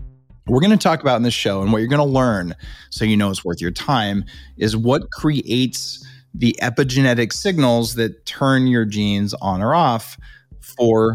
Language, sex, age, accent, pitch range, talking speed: English, male, 30-49, American, 100-125 Hz, 190 wpm